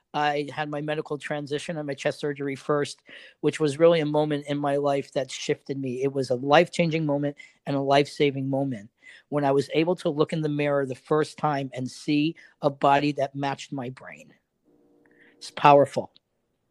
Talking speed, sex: 185 wpm, male